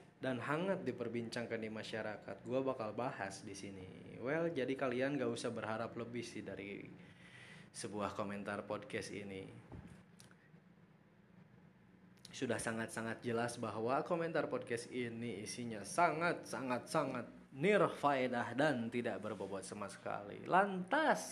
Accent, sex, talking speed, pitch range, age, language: native, male, 110 wpm, 105-130 Hz, 20-39, Indonesian